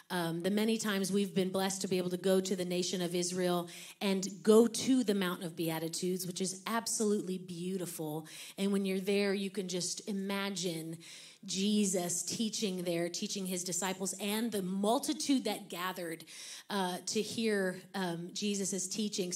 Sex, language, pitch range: female, English, 185-225 Hz